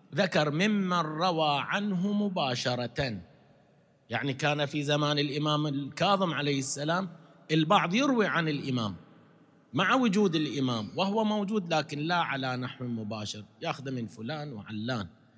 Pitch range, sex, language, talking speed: 135-180 Hz, male, Arabic, 120 wpm